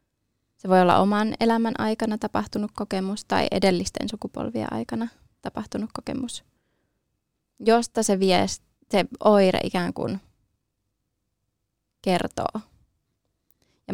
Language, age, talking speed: Finnish, 20-39, 95 wpm